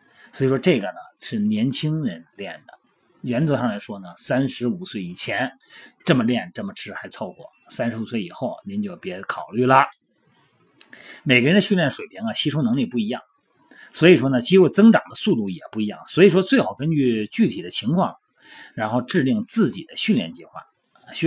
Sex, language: male, Chinese